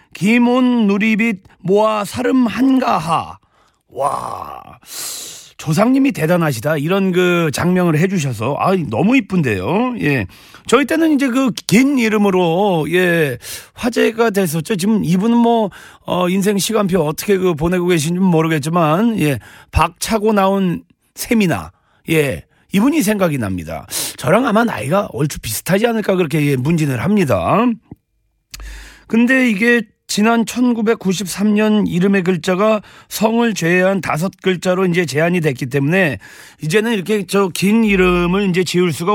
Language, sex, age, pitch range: Korean, male, 40-59, 170-230 Hz